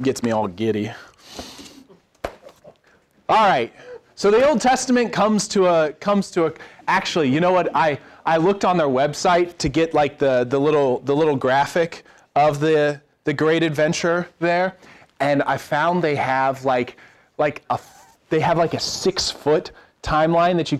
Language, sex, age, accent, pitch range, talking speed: English, male, 30-49, American, 125-170 Hz, 165 wpm